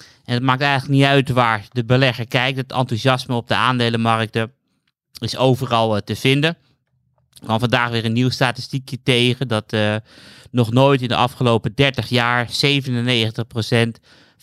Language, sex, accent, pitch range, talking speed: Dutch, male, Dutch, 115-130 Hz, 160 wpm